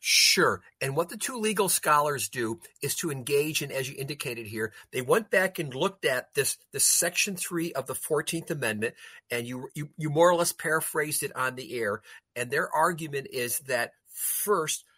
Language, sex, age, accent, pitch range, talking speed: English, male, 50-69, American, 125-170 Hz, 190 wpm